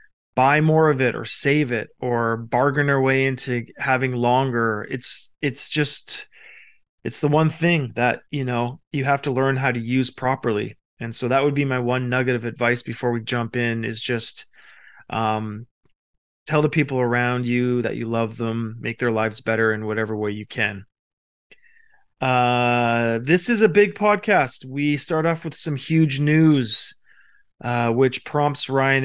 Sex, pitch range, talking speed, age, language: male, 120-145 Hz, 175 wpm, 20-39, English